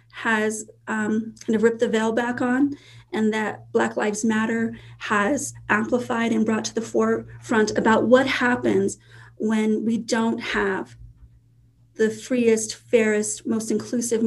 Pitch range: 200-250 Hz